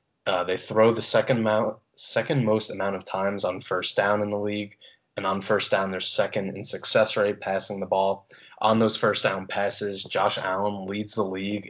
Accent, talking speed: American, 200 wpm